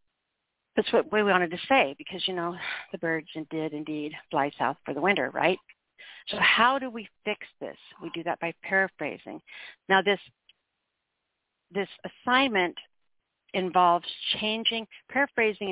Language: English